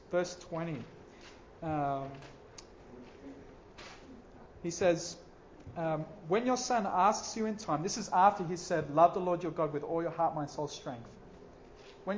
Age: 40-59